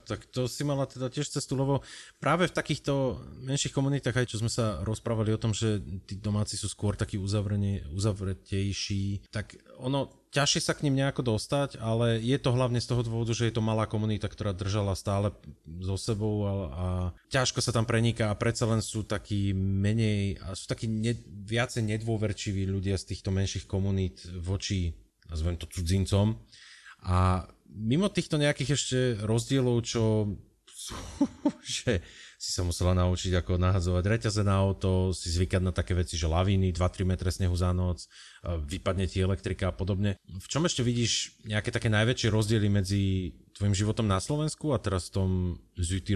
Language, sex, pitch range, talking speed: Slovak, male, 95-115 Hz, 170 wpm